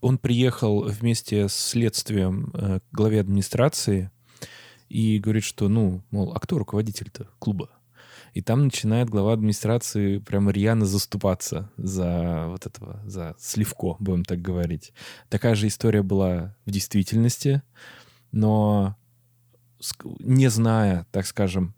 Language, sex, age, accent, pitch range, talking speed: Russian, male, 20-39, native, 100-120 Hz, 120 wpm